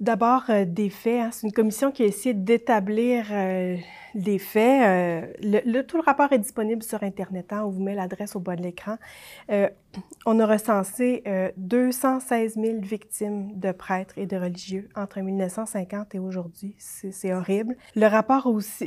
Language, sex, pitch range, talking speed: French, female, 195-235 Hz, 180 wpm